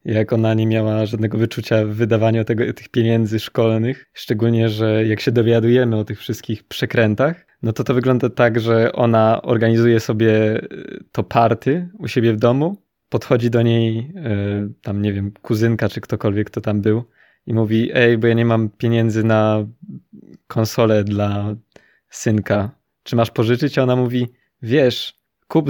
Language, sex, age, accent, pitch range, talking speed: Polish, male, 20-39, native, 110-125 Hz, 155 wpm